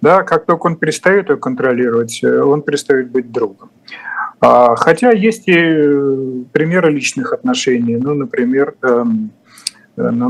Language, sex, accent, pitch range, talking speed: Russian, male, native, 130-170 Hz, 115 wpm